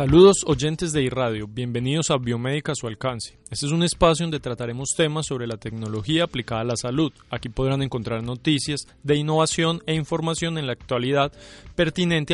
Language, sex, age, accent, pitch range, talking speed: Spanish, male, 20-39, Colombian, 125-160 Hz, 175 wpm